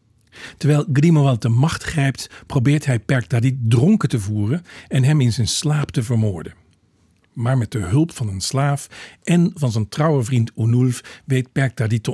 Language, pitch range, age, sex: Dutch, 115-140 Hz, 50-69, male